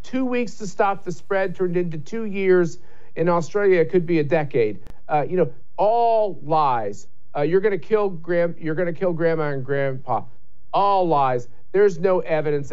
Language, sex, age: English, male, 50-69